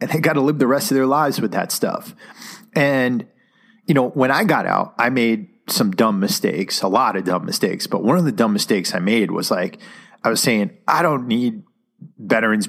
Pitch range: 100-140 Hz